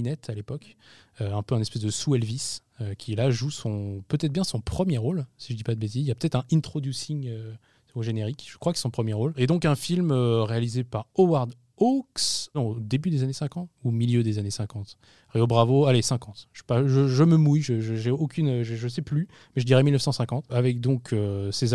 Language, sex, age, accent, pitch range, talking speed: French, male, 20-39, French, 110-145 Hz, 235 wpm